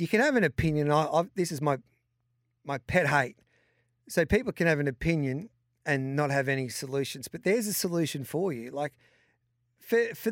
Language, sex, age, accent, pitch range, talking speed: English, male, 40-59, Australian, 155-205 Hz, 190 wpm